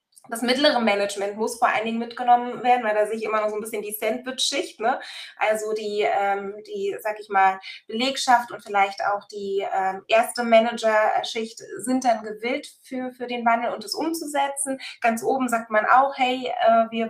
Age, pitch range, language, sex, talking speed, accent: 20-39, 205-250 Hz, German, female, 190 wpm, German